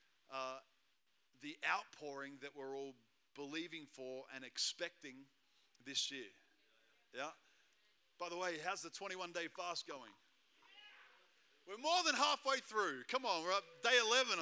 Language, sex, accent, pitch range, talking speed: English, male, Australian, 130-165 Hz, 135 wpm